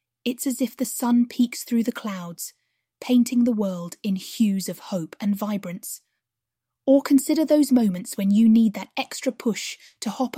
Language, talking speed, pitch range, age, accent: English, 175 wpm, 190-240 Hz, 20-39, British